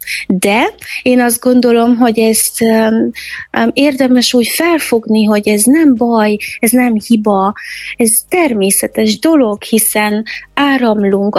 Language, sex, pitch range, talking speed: Hungarian, female, 205-240 Hz, 110 wpm